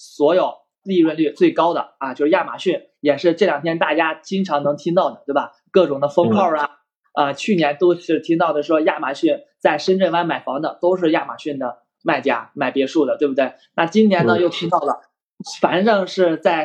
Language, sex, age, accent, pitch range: Chinese, male, 20-39, native, 150-190 Hz